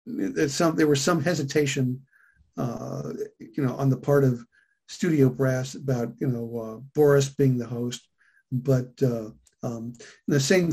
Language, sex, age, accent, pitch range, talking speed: English, male, 50-69, American, 125-145 Hz, 145 wpm